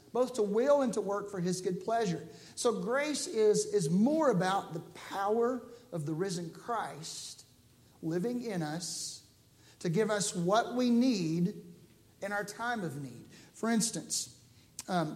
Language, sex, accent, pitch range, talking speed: English, male, American, 180-230 Hz, 155 wpm